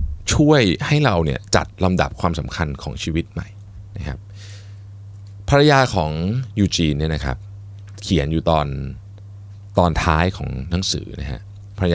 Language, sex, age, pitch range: Thai, male, 20-39, 80-100 Hz